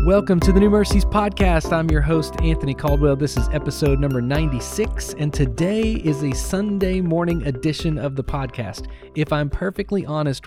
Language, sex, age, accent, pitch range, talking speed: English, male, 30-49, American, 130-160 Hz, 170 wpm